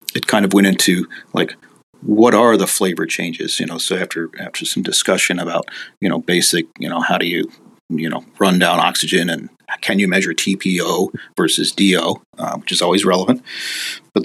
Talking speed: 190 wpm